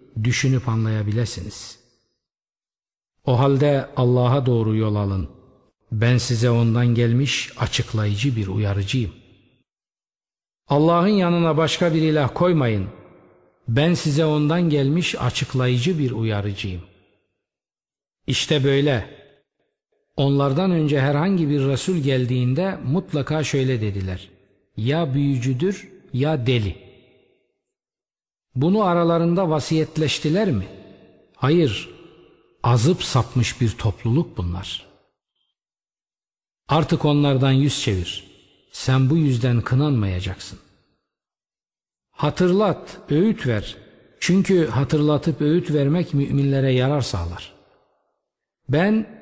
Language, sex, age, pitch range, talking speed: Turkish, male, 50-69, 115-155 Hz, 90 wpm